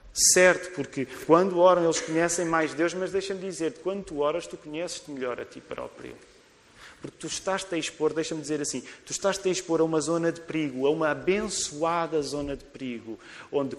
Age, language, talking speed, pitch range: 30-49, Portuguese, 190 wpm, 130-170 Hz